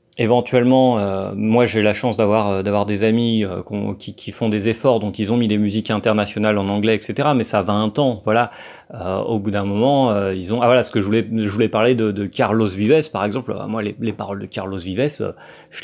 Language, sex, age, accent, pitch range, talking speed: French, male, 30-49, French, 105-120 Hz, 250 wpm